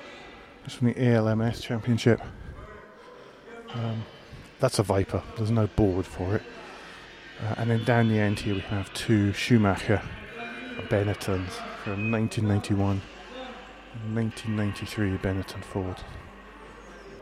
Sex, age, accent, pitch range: male, 30-49, British, 105-130 Hz